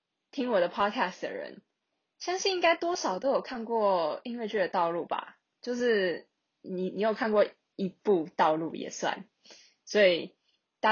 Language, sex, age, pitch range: Chinese, female, 20-39, 175-230 Hz